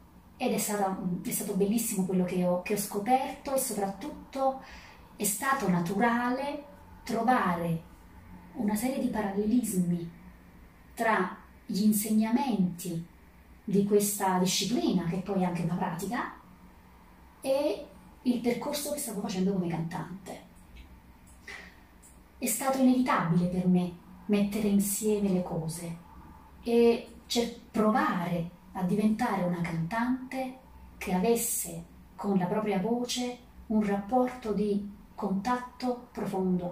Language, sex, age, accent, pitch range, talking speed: Italian, female, 30-49, native, 180-235 Hz, 110 wpm